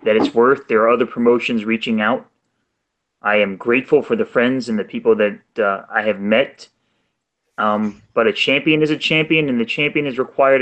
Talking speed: 200 wpm